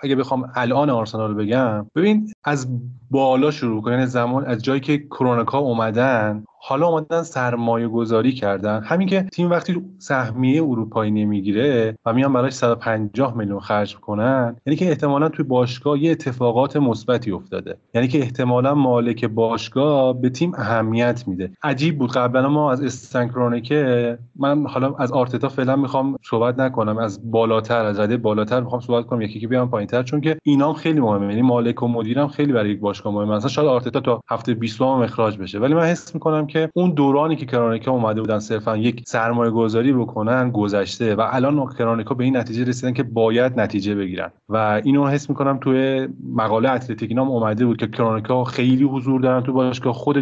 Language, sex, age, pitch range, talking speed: Persian, male, 30-49, 115-135 Hz, 175 wpm